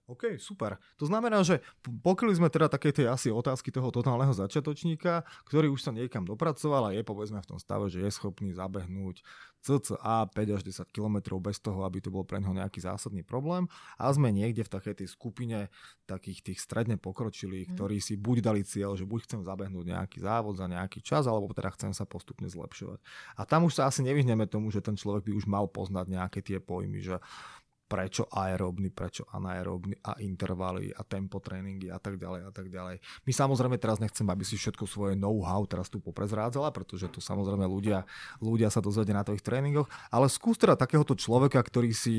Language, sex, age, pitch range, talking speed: Slovak, male, 20-39, 95-125 Hz, 195 wpm